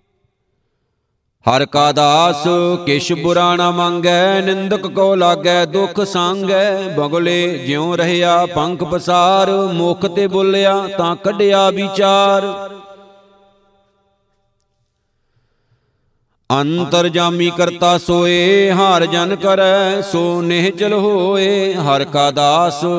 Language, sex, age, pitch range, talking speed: Punjabi, male, 50-69, 175-195 Hz, 85 wpm